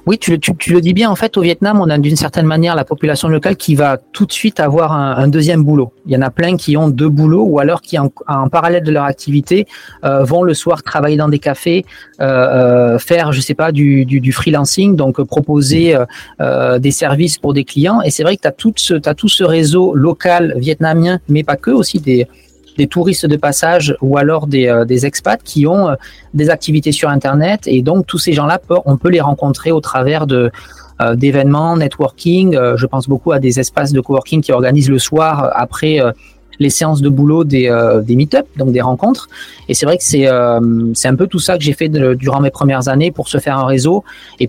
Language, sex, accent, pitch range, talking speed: French, male, French, 135-165 Hz, 225 wpm